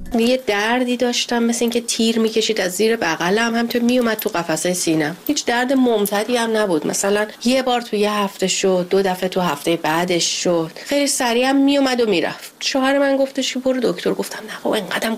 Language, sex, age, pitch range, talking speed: Persian, female, 30-49, 195-275 Hz, 200 wpm